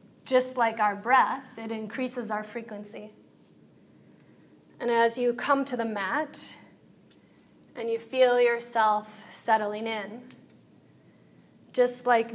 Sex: female